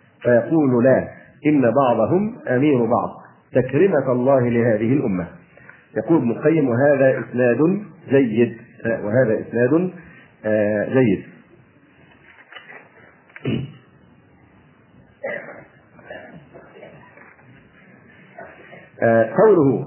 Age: 50-69